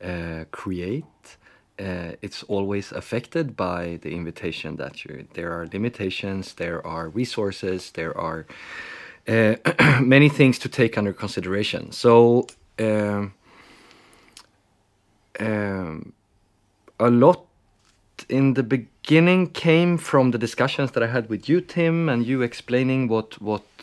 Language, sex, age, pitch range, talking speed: Danish, male, 30-49, 95-120 Hz, 125 wpm